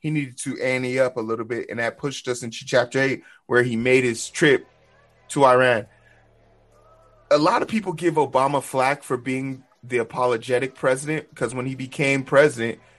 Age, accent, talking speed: 20-39, American, 180 wpm